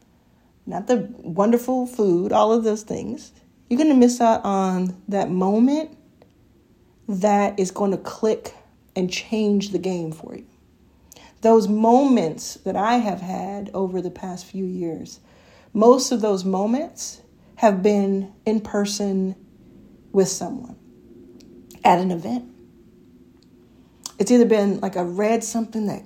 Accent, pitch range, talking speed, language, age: American, 195-235 Hz, 135 wpm, English, 40-59